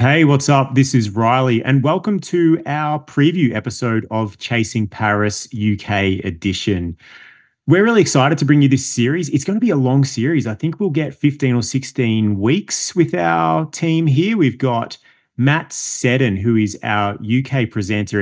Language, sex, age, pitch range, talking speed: English, male, 30-49, 105-135 Hz, 175 wpm